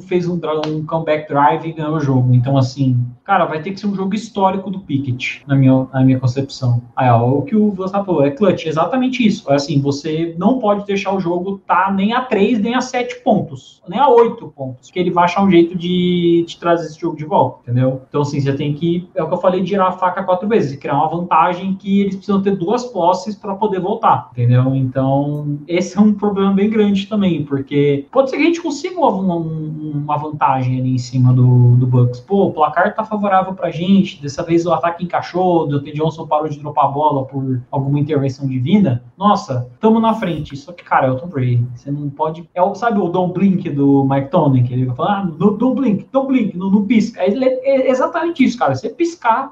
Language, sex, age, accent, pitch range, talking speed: Portuguese, male, 20-39, Brazilian, 145-200 Hz, 230 wpm